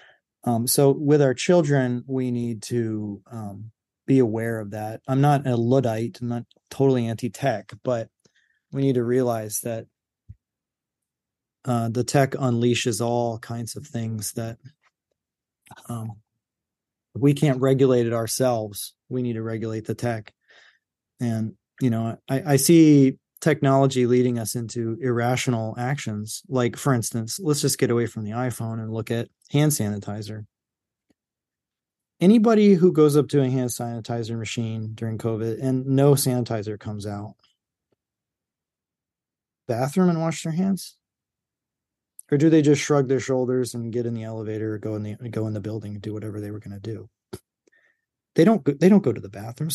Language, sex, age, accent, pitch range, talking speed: English, male, 30-49, American, 110-135 Hz, 160 wpm